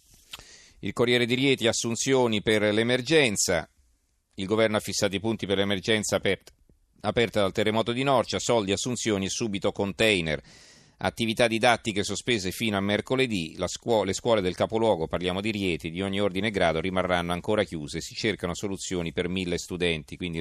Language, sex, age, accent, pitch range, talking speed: Italian, male, 40-59, native, 90-110 Hz, 155 wpm